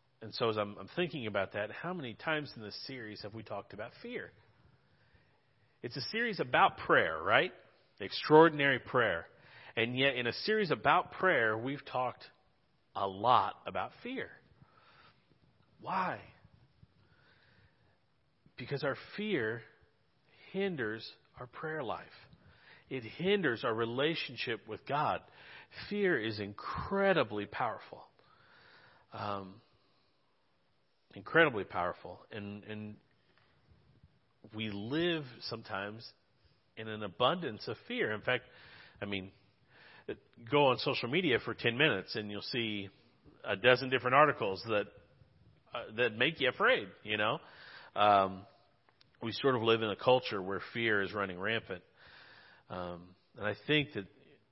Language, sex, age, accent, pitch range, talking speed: English, male, 40-59, American, 105-145 Hz, 125 wpm